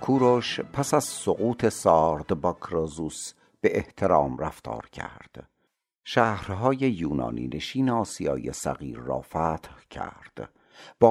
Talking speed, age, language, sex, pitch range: 110 wpm, 60-79, Persian, male, 80-110 Hz